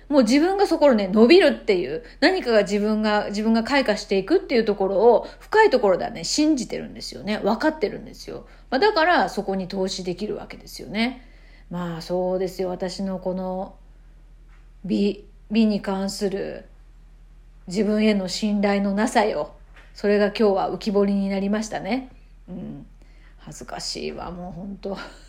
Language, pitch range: Japanese, 190-265 Hz